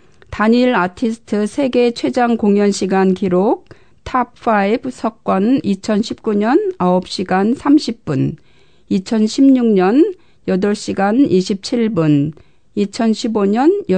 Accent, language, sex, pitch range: native, Korean, female, 190-240 Hz